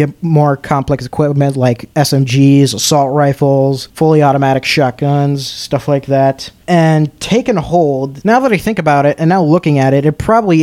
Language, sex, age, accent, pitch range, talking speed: English, male, 20-39, American, 140-170 Hz, 170 wpm